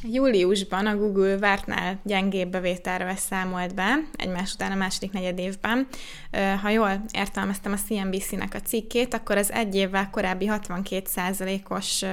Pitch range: 190-210 Hz